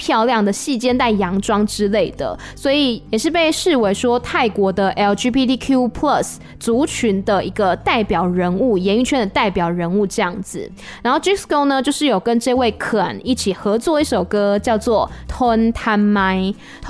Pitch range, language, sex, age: 210-285 Hz, Chinese, female, 20-39